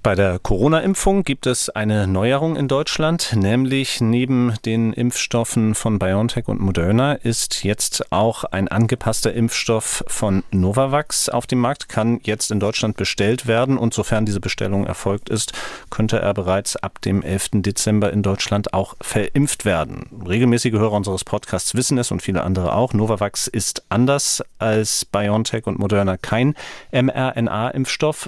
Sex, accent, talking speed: male, German, 150 wpm